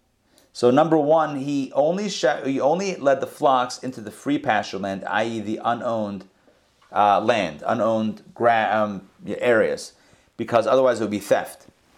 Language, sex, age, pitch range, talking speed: English, male, 30-49, 115-155 Hz, 155 wpm